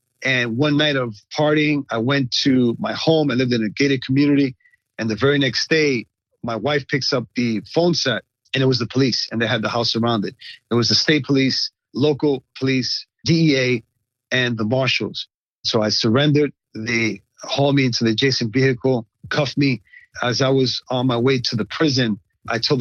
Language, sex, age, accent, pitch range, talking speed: English, male, 40-59, American, 115-140 Hz, 195 wpm